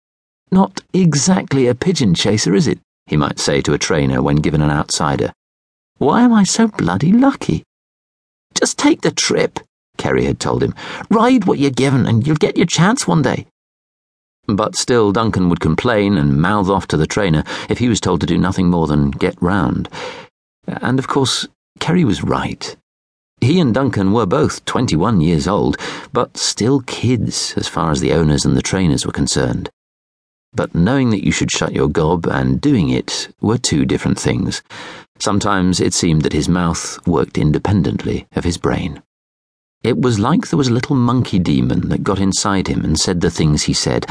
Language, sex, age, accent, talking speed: English, male, 50-69, British, 185 wpm